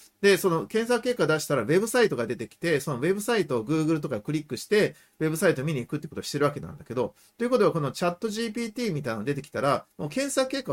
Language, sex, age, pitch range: Japanese, male, 40-59, 140-185 Hz